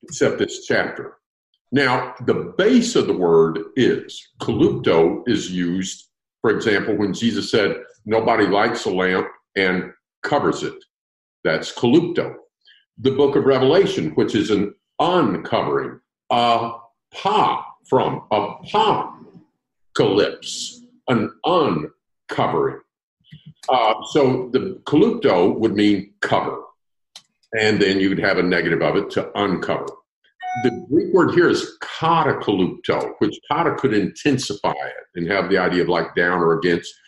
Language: English